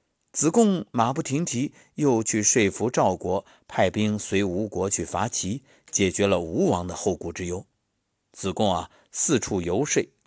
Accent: native